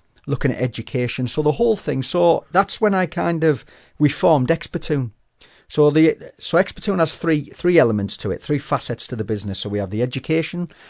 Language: English